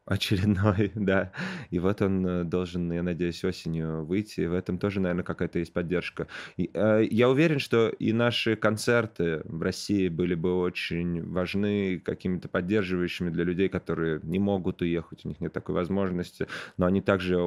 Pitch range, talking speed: 85-100 Hz, 165 wpm